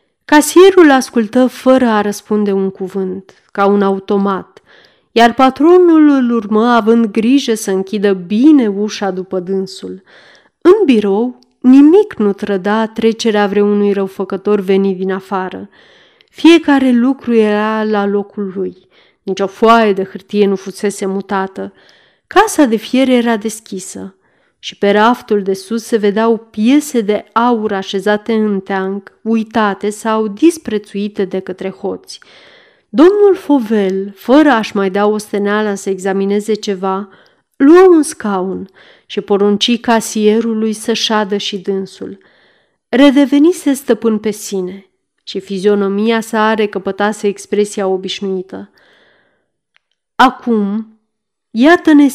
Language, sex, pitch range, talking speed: Romanian, female, 195-235 Hz, 120 wpm